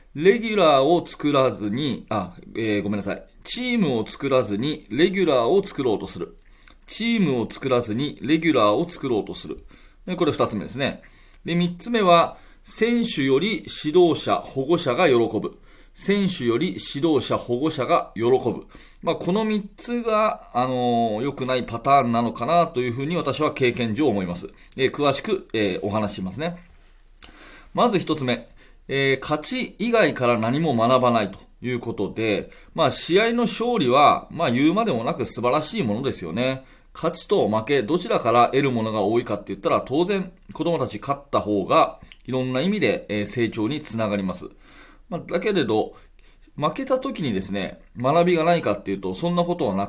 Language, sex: Japanese, male